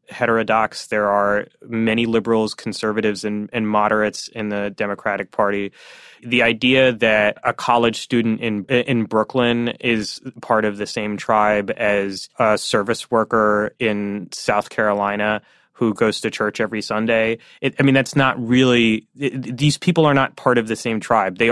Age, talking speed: 20-39, 160 wpm